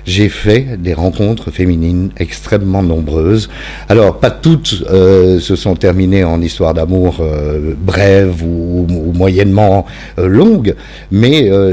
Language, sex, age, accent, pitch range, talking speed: French, male, 50-69, French, 85-105 Hz, 140 wpm